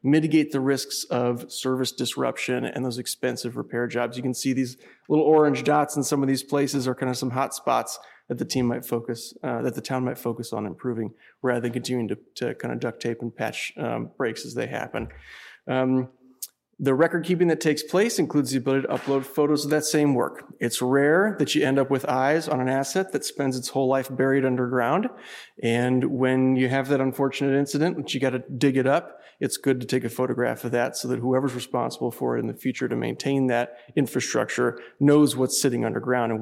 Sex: male